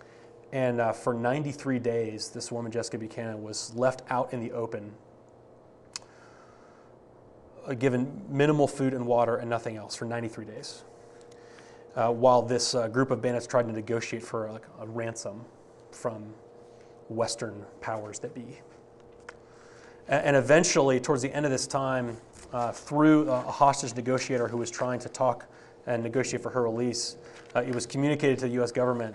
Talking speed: 160 wpm